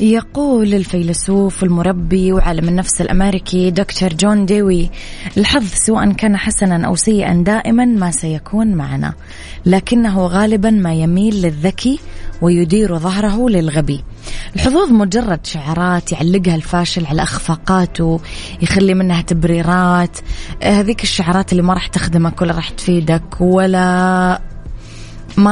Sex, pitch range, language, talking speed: female, 170-205 Hz, Arabic, 115 wpm